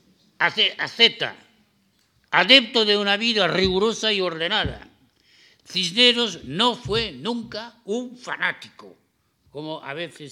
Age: 60-79